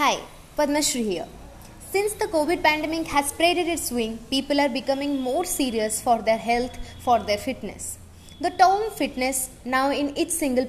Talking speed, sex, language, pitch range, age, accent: 165 wpm, female, Hindi, 230-300 Hz, 20-39, native